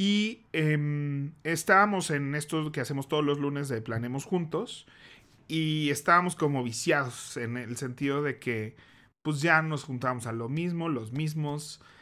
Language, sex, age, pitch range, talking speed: Spanish, male, 40-59, 120-150 Hz, 155 wpm